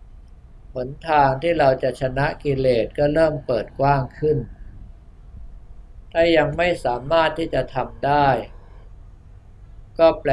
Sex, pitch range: male, 110-145 Hz